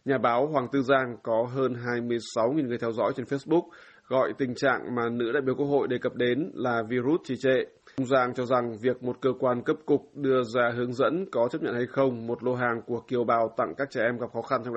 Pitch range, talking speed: 120-135 Hz, 250 wpm